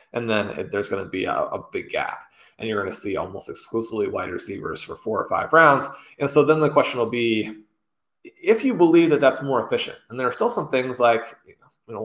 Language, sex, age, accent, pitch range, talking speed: English, male, 20-39, American, 115-145 Hz, 250 wpm